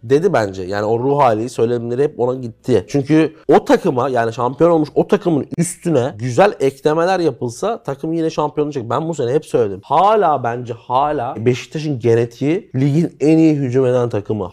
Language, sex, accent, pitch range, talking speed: Turkish, male, native, 110-150 Hz, 175 wpm